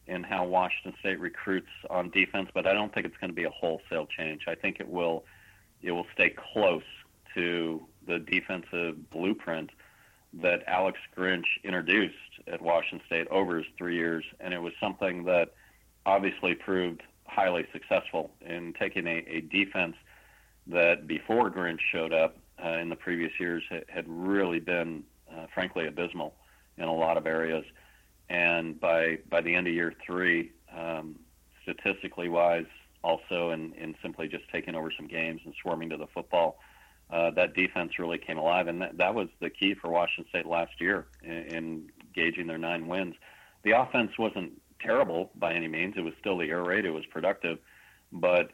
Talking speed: 175 wpm